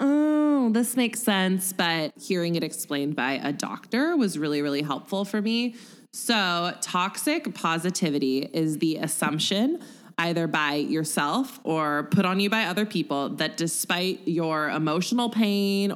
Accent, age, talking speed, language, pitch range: American, 20-39, 145 wpm, English, 150-205 Hz